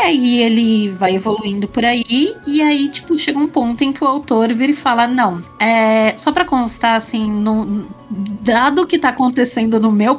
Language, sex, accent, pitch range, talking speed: Portuguese, female, Brazilian, 210-270 Hz, 195 wpm